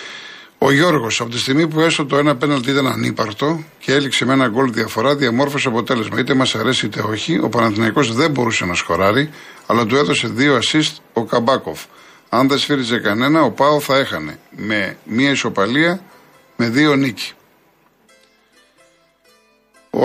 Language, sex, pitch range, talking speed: Greek, male, 110-145 Hz, 160 wpm